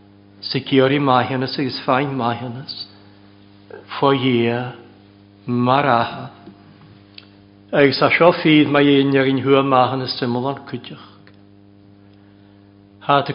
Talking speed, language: 75 wpm, English